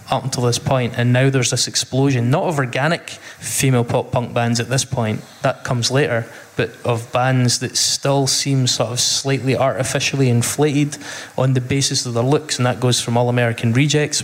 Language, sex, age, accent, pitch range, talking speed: English, male, 20-39, British, 120-135 Hz, 190 wpm